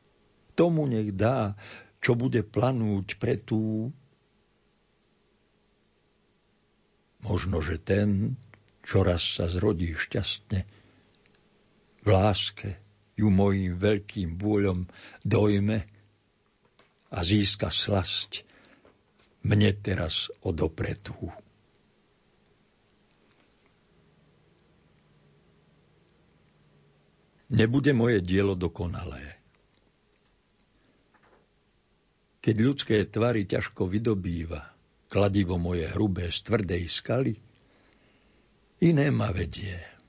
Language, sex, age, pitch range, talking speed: Slovak, male, 60-79, 90-110 Hz, 70 wpm